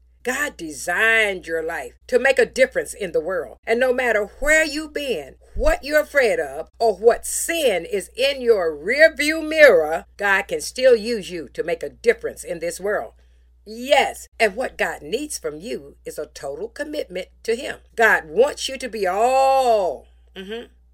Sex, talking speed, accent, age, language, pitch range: female, 180 wpm, American, 50-69, English, 205-345 Hz